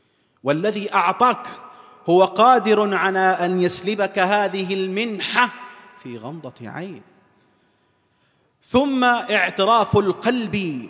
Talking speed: 85 wpm